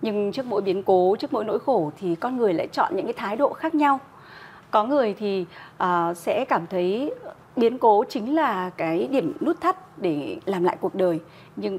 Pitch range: 180-240 Hz